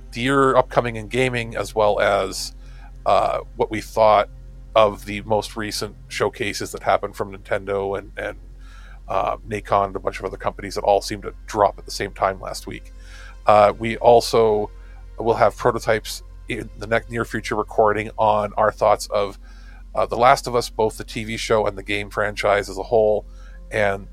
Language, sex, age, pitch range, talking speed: English, male, 40-59, 100-115 Hz, 185 wpm